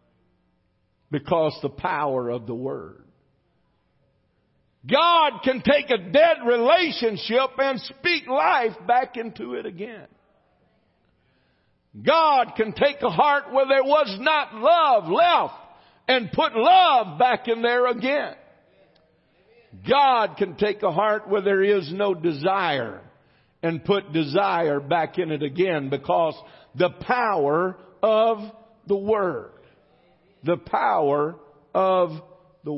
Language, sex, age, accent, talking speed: English, male, 60-79, American, 115 wpm